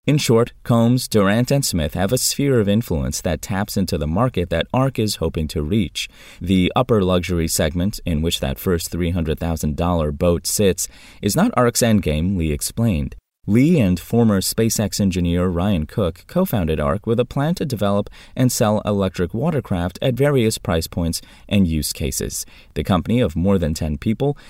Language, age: English, 30-49